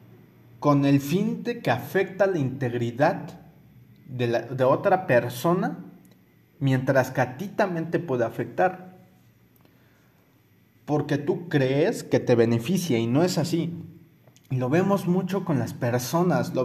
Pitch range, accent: 125-160 Hz, Mexican